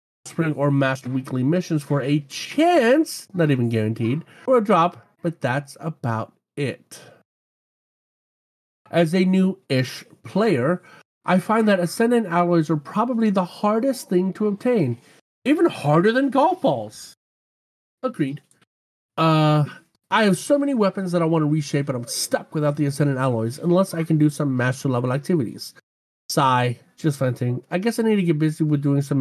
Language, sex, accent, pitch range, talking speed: English, male, American, 135-180 Hz, 160 wpm